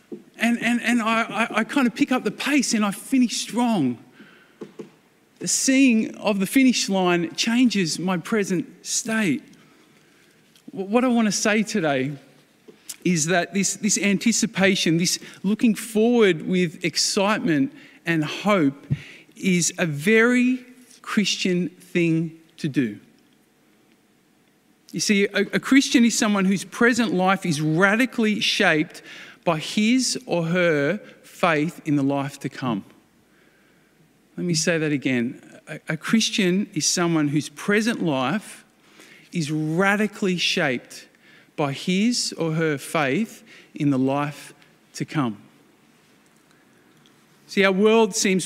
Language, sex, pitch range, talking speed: English, male, 165-220 Hz, 130 wpm